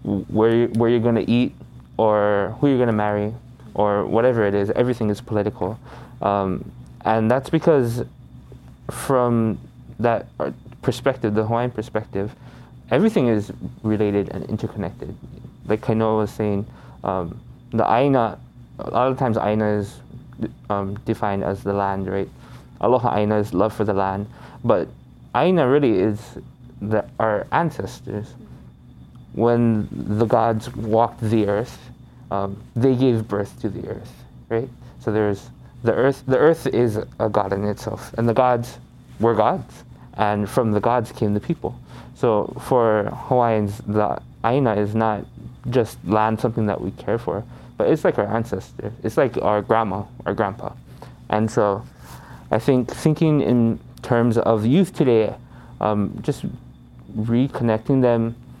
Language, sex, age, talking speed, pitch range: English, male, 20-39, 145 wpm, 100-120 Hz